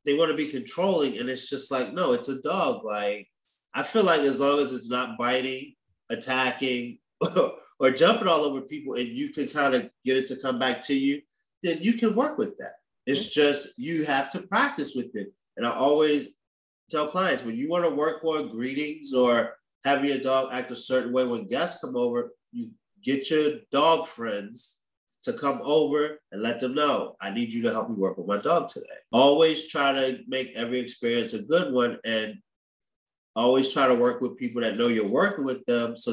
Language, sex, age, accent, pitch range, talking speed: English, male, 30-49, American, 125-165 Hz, 210 wpm